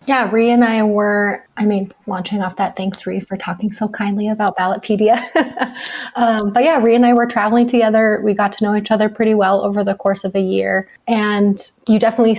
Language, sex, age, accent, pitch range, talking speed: English, female, 20-39, American, 195-225 Hz, 215 wpm